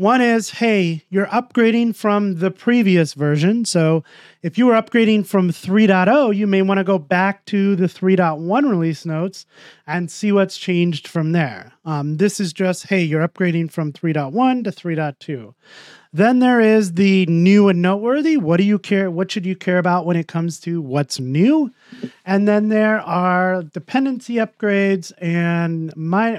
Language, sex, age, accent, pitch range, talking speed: English, male, 30-49, American, 165-210 Hz, 170 wpm